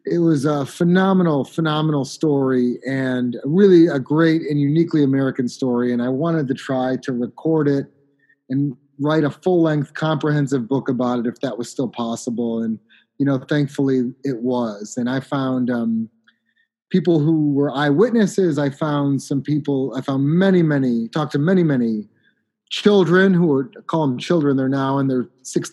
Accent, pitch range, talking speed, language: American, 130-155 Hz, 170 wpm, English